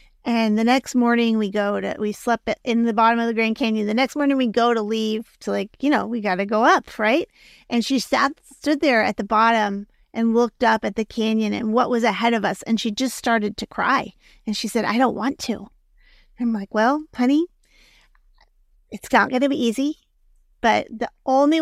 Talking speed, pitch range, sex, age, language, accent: 220 wpm, 215-250 Hz, female, 30-49, English, American